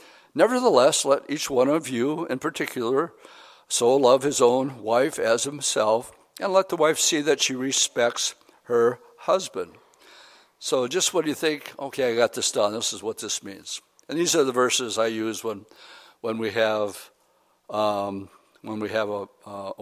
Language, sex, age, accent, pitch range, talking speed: English, male, 60-79, American, 115-160 Hz, 175 wpm